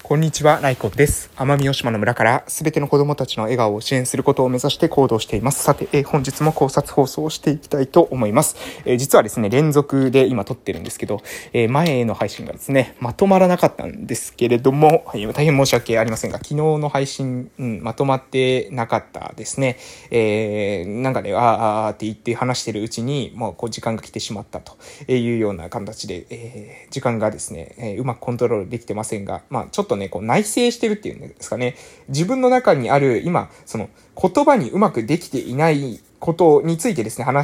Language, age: Japanese, 20-39